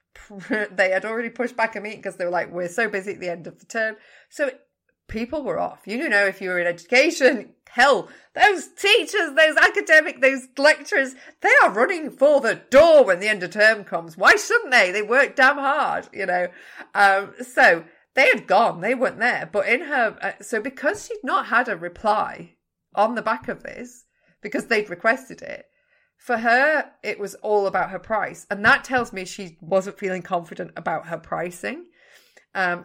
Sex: female